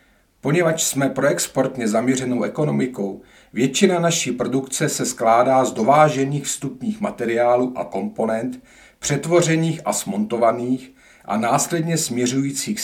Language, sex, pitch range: Czech, male, 125-150 Hz